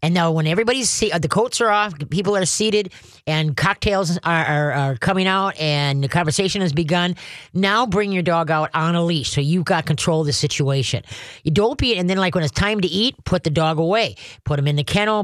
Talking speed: 230 wpm